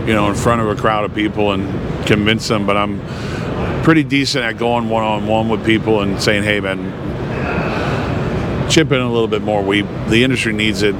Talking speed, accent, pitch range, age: 195 wpm, American, 105-125 Hz, 50-69